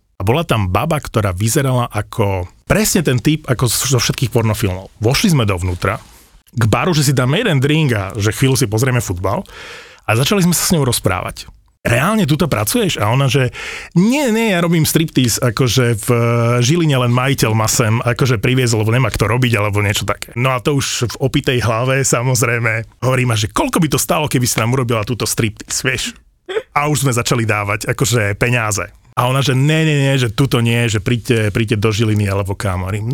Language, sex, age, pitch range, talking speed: Slovak, male, 30-49, 115-150 Hz, 195 wpm